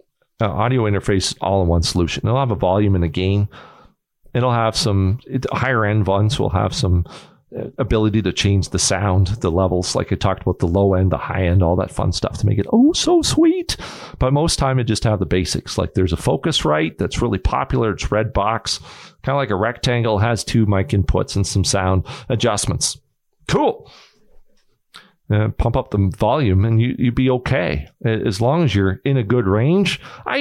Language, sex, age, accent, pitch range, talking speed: English, male, 40-59, American, 95-130 Hz, 190 wpm